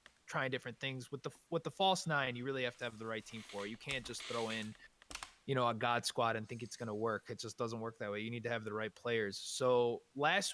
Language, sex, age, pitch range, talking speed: English, male, 20-39, 115-150 Hz, 280 wpm